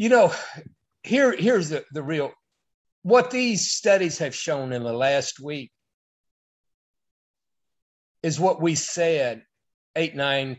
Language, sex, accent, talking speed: English, male, American, 125 wpm